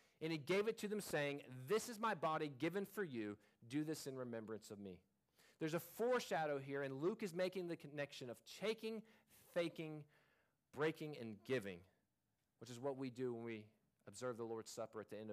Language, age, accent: English, 40-59, American